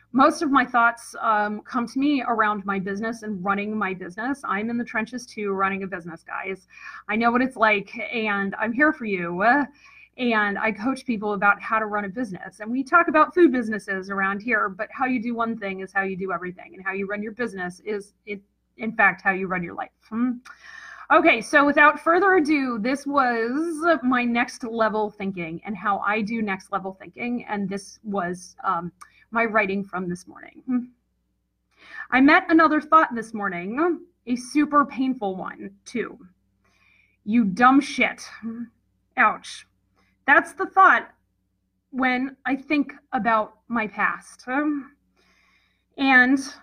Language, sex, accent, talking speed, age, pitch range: English, female, American, 165 wpm, 30-49, 200-275 Hz